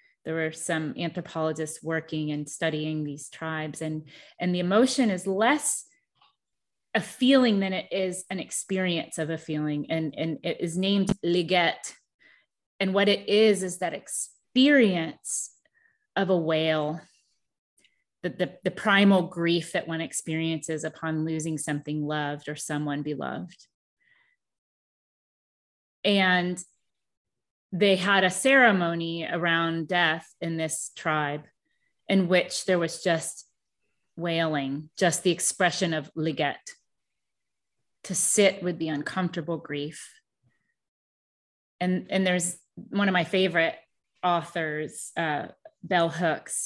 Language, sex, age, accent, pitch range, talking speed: English, female, 30-49, American, 155-195 Hz, 120 wpm